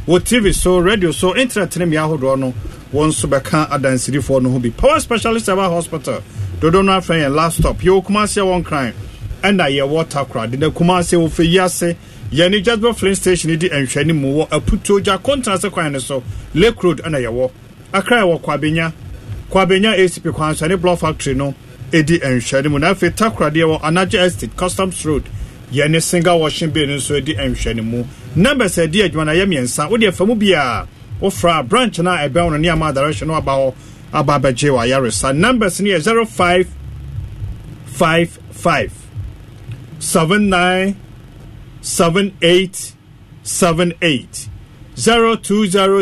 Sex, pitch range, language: male, 130-185 Hz, English